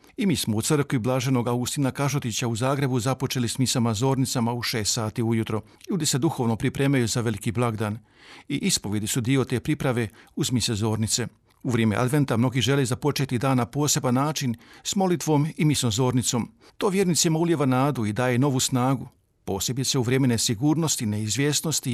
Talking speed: 170 wpm